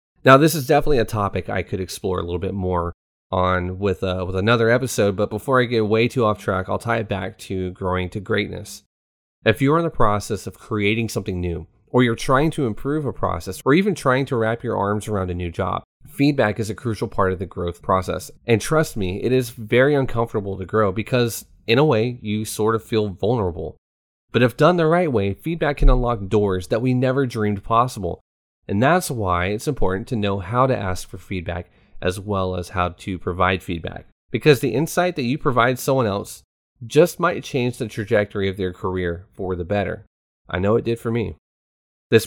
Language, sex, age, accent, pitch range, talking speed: English, male, 30-49, American, 95-125 Hz, 215 wpm